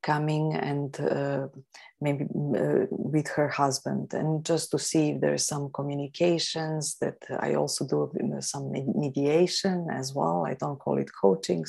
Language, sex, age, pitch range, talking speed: English, female, 30-49, 145-180 Hz, 150 wpm